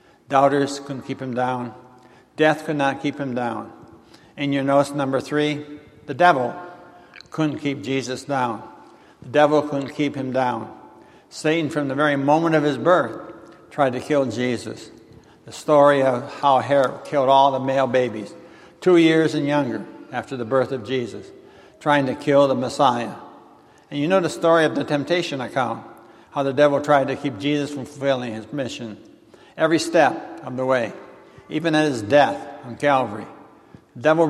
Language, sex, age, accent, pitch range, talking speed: English, male, 60-79, American, 125-150 Hz, 170 wpm